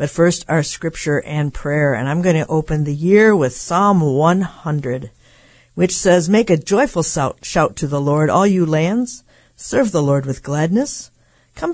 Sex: female